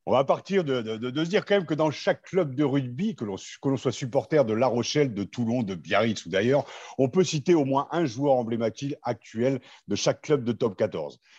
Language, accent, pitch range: French, French, 115-145 Hz